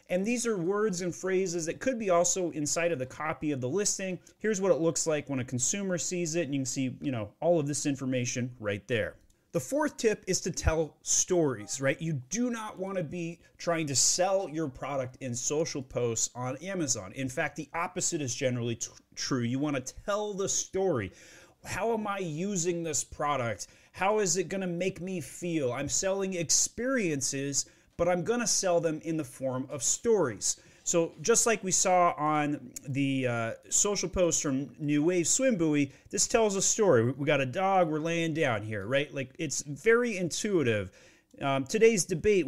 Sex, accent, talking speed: male, American, 200 wpm